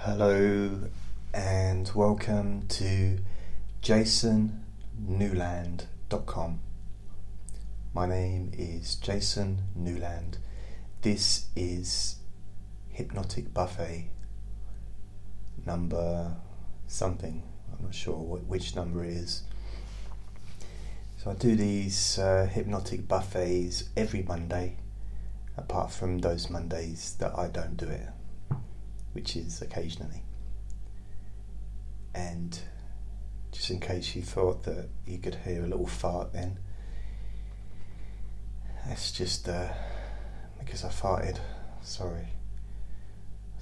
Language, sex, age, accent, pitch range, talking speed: English, male, 30-49, British, 90-100 Hz, 90 wpm